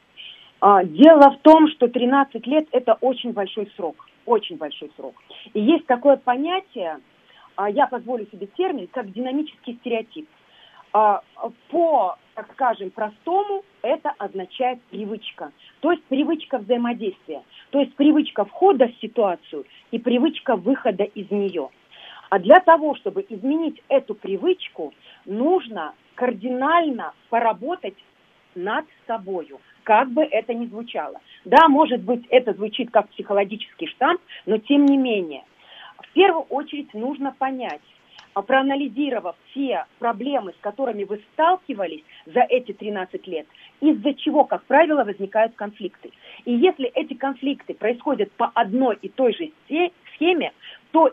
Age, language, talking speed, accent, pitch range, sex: 40-59, Russian, 130 wpm, native, 215-290 Hz, female